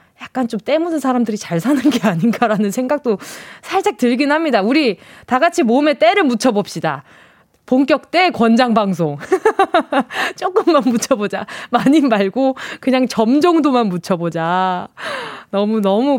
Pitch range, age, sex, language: 200-295 Hz, 20-39, female, Korean